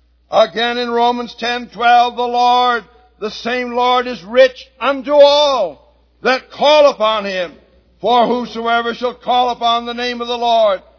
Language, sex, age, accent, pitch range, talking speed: English, male, 60-79, American, 205-250 Hz, 155 wpm